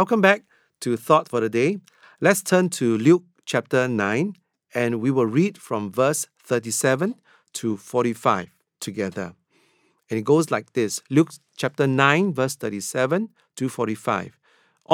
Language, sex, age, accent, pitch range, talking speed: English, male, 50-69, Malaysian, 130-190 Hz, 140 wpm